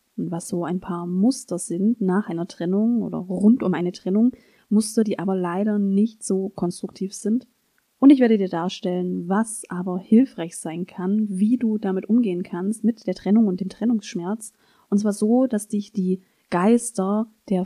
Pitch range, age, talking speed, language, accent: 185-230 Hz, 20-39, 175 wpm, German, German